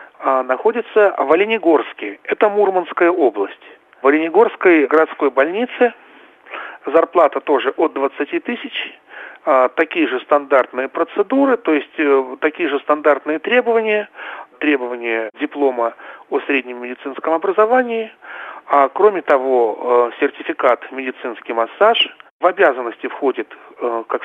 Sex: male